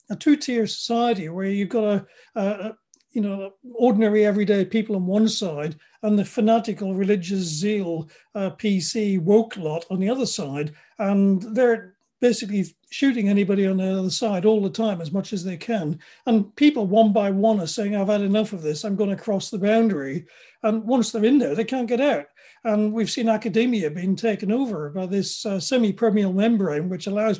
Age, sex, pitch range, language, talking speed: 40-59, male, 190-225 Hz, English, 195 wpm